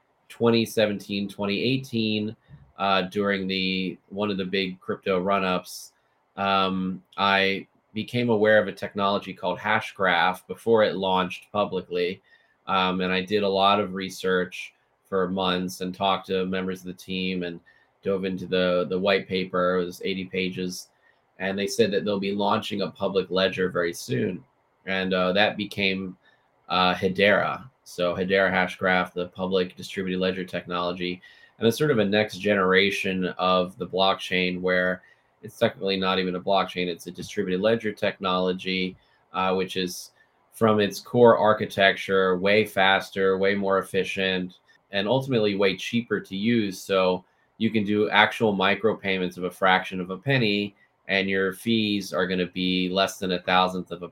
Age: 20-39